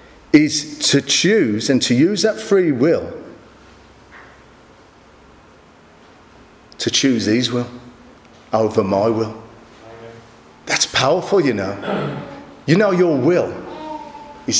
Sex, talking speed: male, 105 wpm